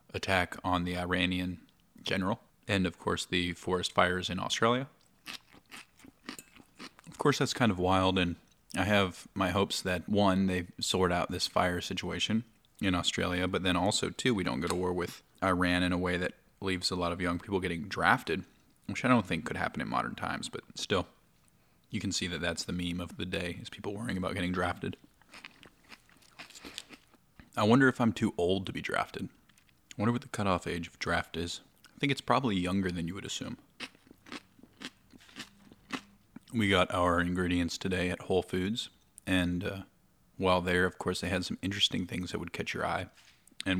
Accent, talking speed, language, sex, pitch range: American, 185 wpm, English, male, 90-100 Hz